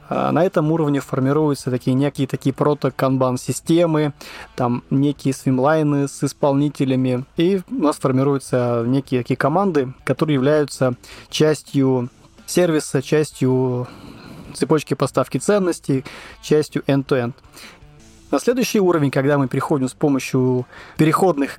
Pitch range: 130-155 Hz